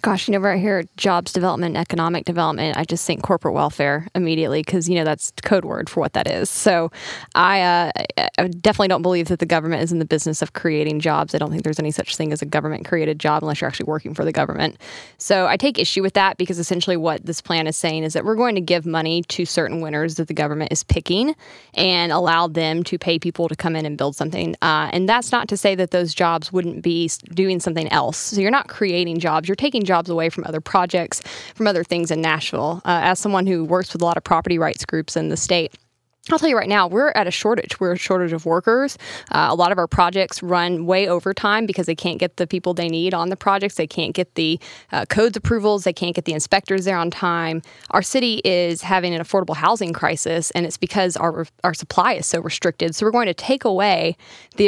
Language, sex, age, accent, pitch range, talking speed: English, female, 10-29, American, 165-185 Hz, 245 wpm